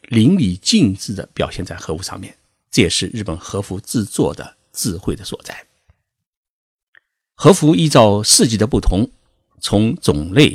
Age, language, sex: 50-69, Chinese, male